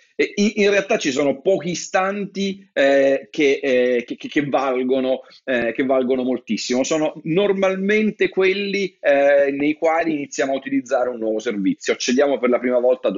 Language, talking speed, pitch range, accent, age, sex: Italian, 130 wpm, 135-200 Hz, native, 40-59, male